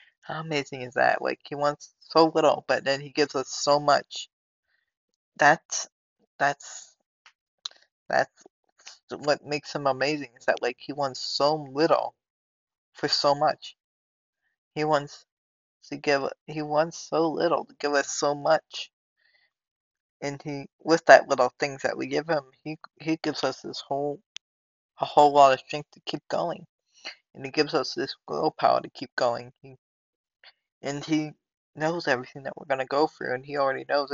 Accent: American